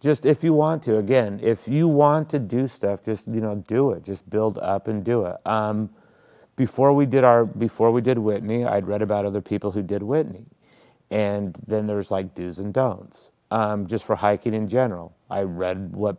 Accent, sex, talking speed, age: American, male, 210 wpm, 30-49